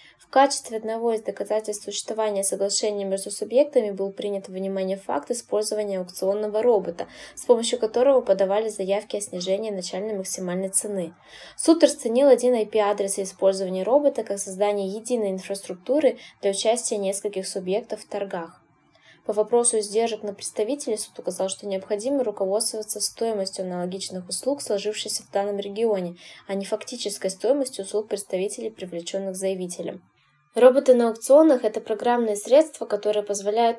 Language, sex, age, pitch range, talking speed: Russian, female, 20-39, 195-235 Hz, 135 wpm